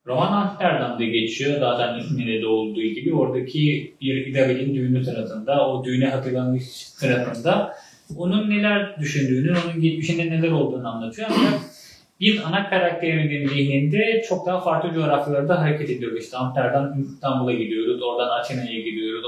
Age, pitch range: 30-49, 125-170 Hz